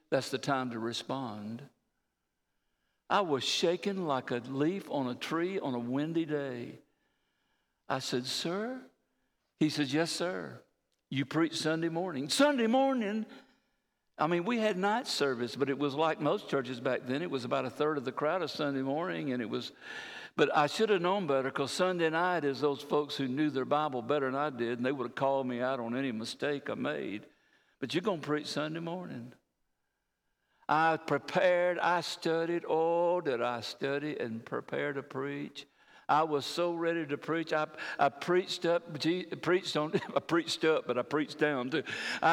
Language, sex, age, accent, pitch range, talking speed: English, male, 60-79, American, 135-180 Hz, 185 wpm